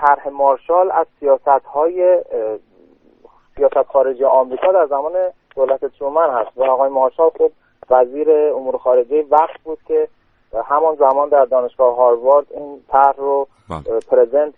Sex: male